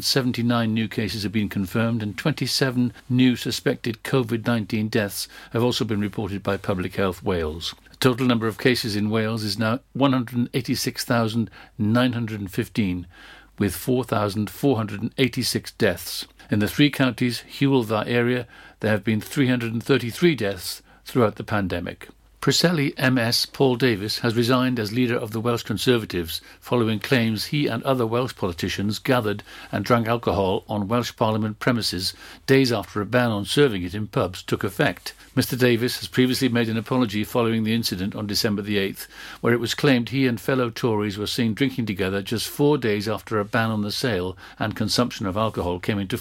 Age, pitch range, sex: 60-79, 105-125 Hz, male